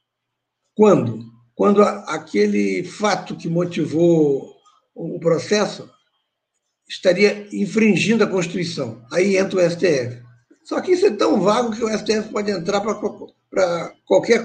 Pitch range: 150-195 Hz